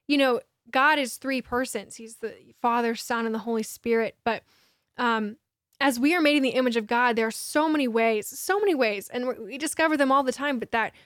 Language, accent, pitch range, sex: English, American, 225-260 Hz, female